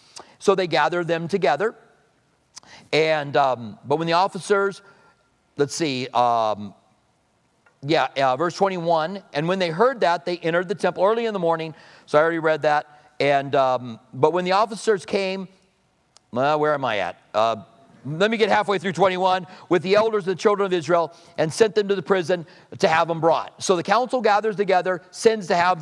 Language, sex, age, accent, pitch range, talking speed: English, male, 50-69, American, 165-220 Hz, 190 wpm